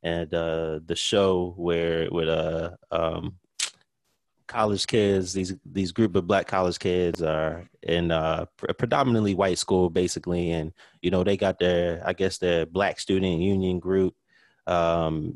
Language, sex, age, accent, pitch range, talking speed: English, male, 30-49, American, 85-105 Hz, 150 wpm